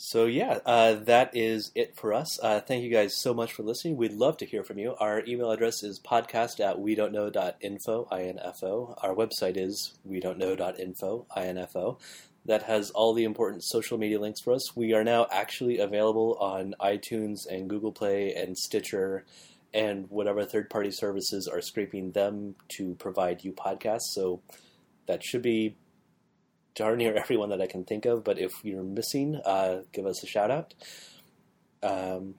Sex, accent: male, American